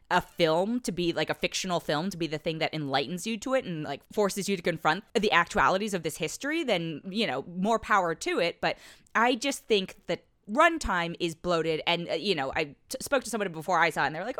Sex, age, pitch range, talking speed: female, 20-39, 170-280 Hz, 250 wpm